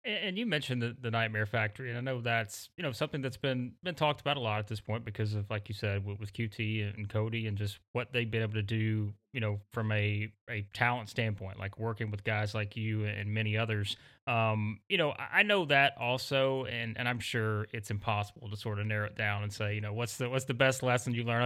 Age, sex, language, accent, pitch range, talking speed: 30-49, male, English, American, 110-130 Hz, 250 wpm